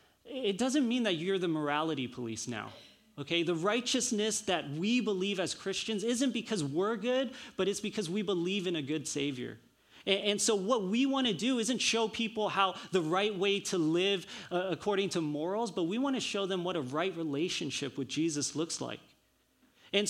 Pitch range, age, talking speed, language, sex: 155-205 Hz, 30-49, 190 wpm, English, male